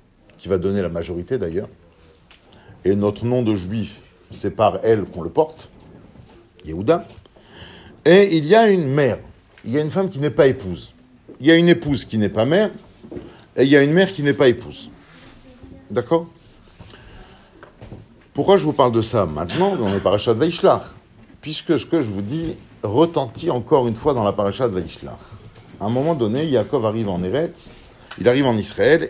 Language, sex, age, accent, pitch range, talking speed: French, male, 50-69, French, 105-165 Hz, 190 wpm